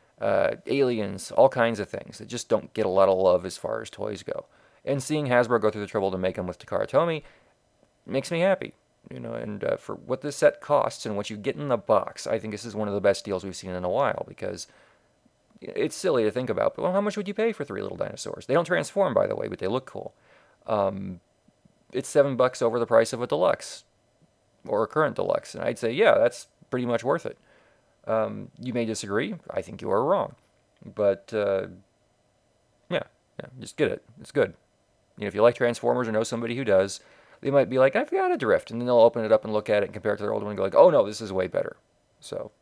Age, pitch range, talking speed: 30-49, 100-135 Hz, 250 wpm